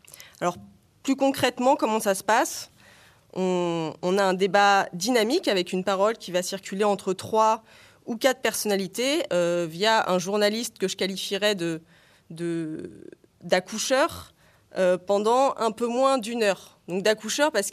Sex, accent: female, French